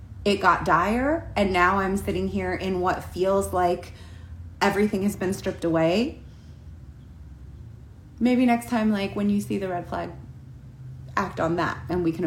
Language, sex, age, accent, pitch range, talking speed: English, female, 30-49, American, 160-220 Hz, 160 wpm